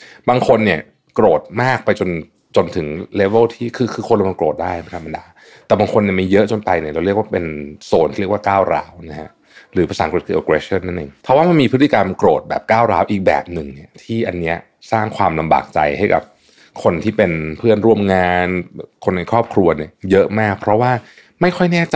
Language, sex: Thai, male